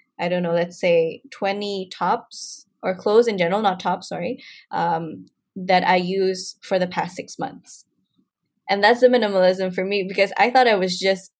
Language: English